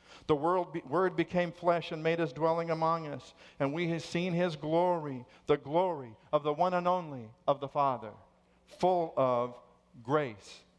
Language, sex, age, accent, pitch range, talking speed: English, male, 50-69, American, 135-180 Hz, 165 wpm